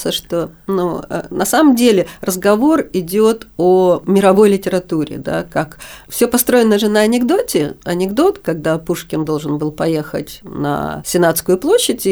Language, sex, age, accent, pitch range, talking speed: Russian, female, 50-69, native, 170-220 Hz, 130 wpm